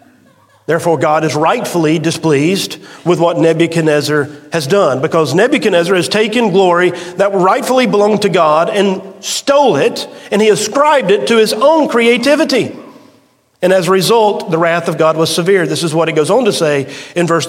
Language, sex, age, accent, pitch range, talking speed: English, male, 40-59, American, 165-220 Hz, 175 wpm